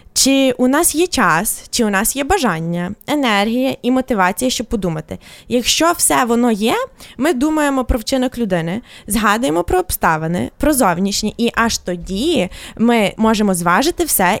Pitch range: 205-270 Hz